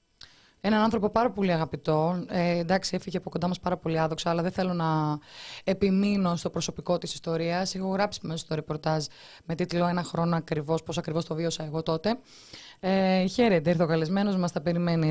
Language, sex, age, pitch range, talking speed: Greek, female, 20-39, 165-225 Hz, 185 wpm